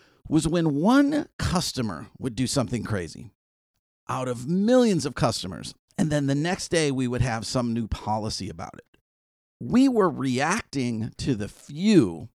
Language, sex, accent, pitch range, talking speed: English, male, American, 105-150 Hz, 155 wpm